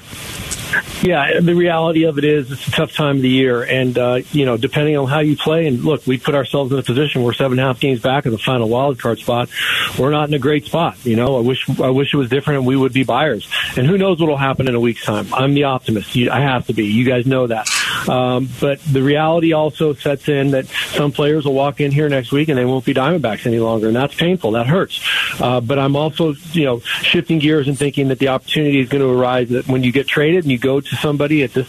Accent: American